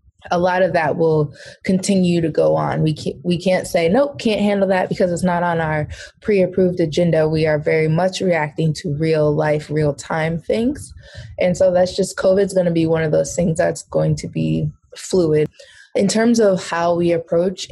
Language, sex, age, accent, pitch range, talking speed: English, female, 20-39, American, 155-185 Hz, 200 wpm